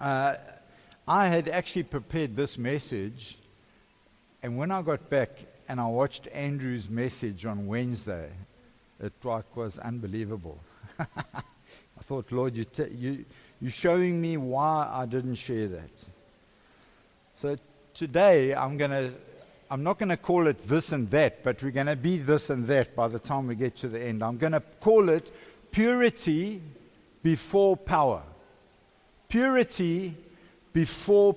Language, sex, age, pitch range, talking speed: English, male, 60-79, 130-195 Hz, 145 wpm